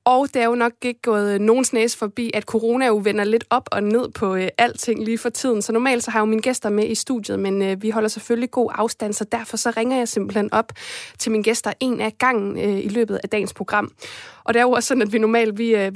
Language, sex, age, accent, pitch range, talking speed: Danish, female, 20-39, native, 200-235 Hz, 265 wpm